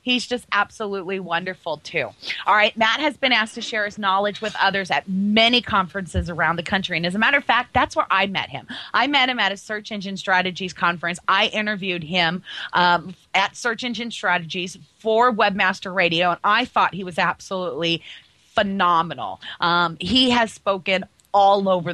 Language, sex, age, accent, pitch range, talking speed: English, female, 30-49, American, 175-215 Hz, 185 wpm